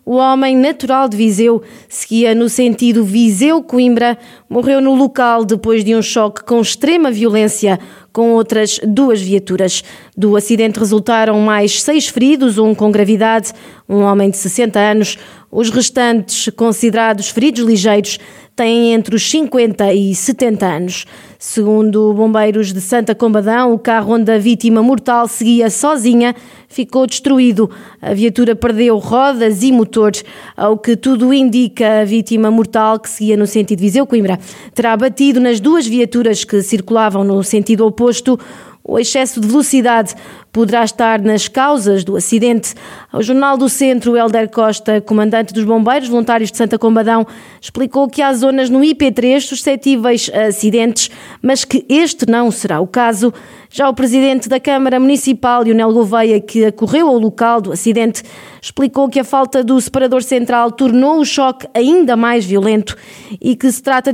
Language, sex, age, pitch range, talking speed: Portuguese, female, 20-39, 220-255 Hz, 150 wpm